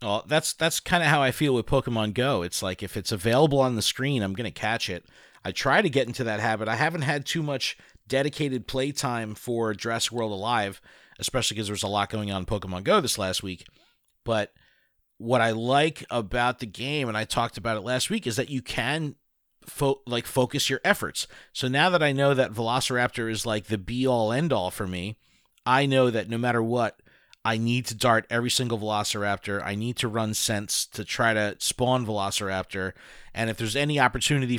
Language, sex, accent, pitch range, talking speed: English, male, American, 110-140 Hz, 210 wpm